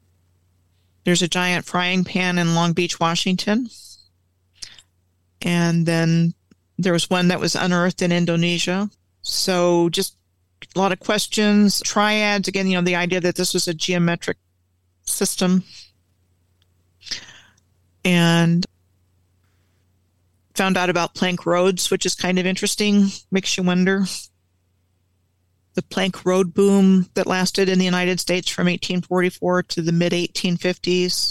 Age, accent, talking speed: 40-59, American, 130 wpm